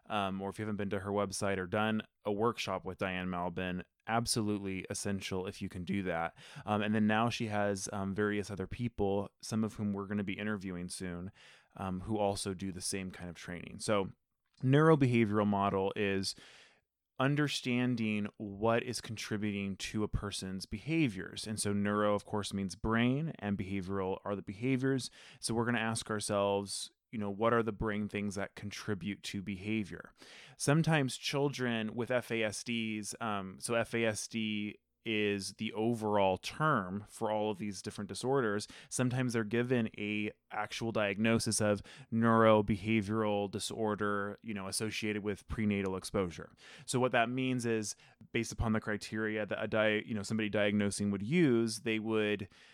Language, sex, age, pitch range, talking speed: English, male, 20-39, 100-115 Hz, 165 wpm